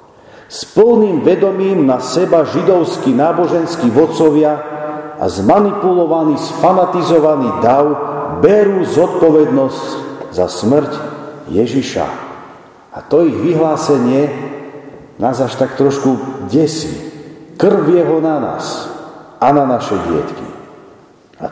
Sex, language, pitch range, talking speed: male, Slovak, 140-190 Hz, 100 wpm